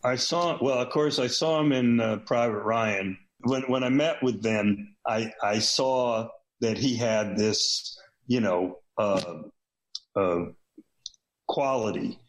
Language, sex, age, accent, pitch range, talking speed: English, male, 60-79, American, 105-130 Hz, 145 wpm